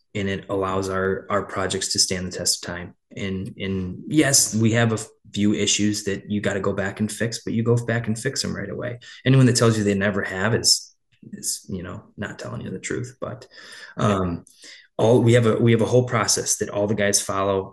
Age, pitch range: 20-39, 95-115 Hz